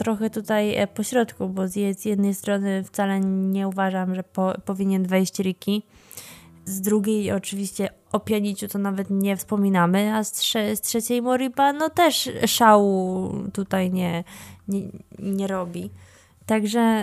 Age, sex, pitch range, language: 20-39, female, 195-220 Hz, Polish